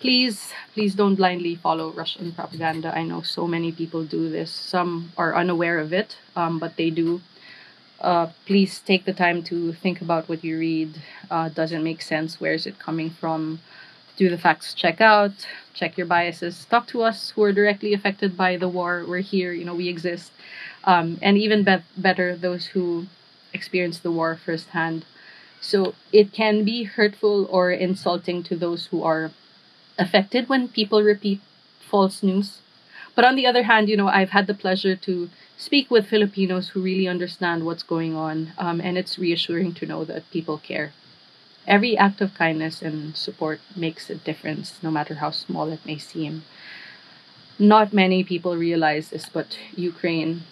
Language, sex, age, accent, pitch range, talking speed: Filipino, female, 20-39, native, 165-195 Hz, 175 wpm